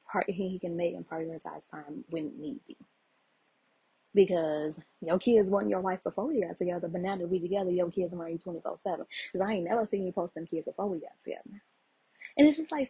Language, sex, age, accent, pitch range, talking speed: English, female, 20-39, American, 175-235 Hz, 225 wpm